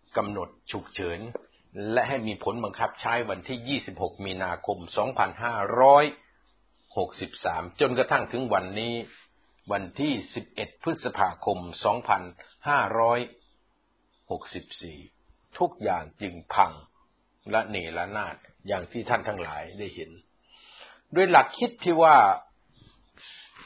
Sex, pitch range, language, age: male, 105-140 Hz, Thai, 60-79